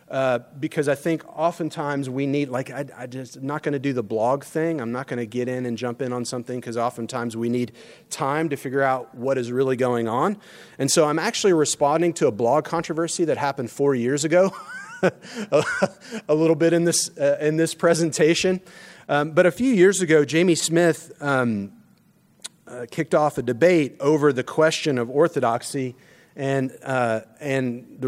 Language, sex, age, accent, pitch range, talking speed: English, male, 30-49, American, 130-170 Hz, 190 wpm